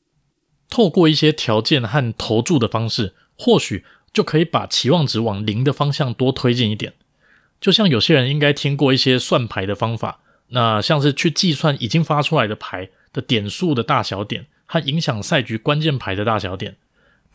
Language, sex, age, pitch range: Chinese, male, 20-39, 110-155 Hz